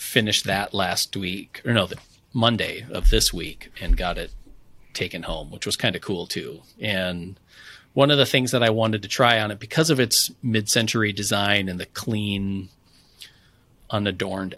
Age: 30-49